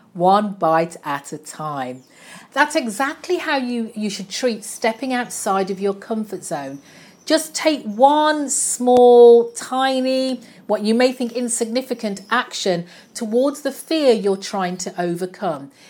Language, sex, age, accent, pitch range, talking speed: English, female, 40-59, British, 195-250 Hz, 135 wpm